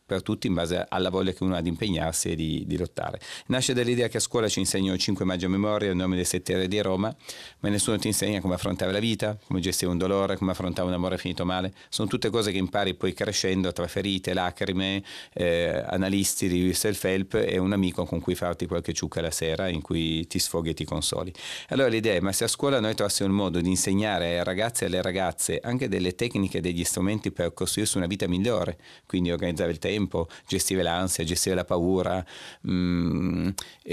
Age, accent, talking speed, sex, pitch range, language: 40-59, native, 220 wpm, male, 90-105 Hz, Italian